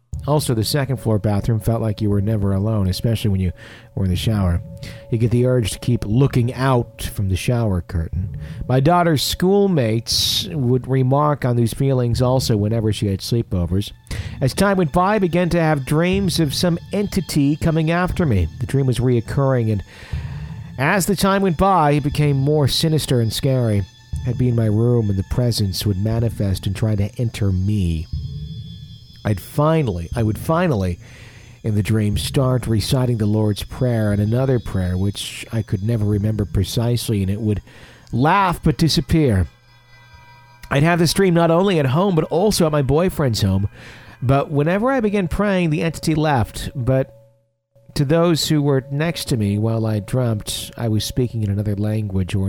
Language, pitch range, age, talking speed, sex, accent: English, 105-145 Hz, 50-69, 180 wpm, male, American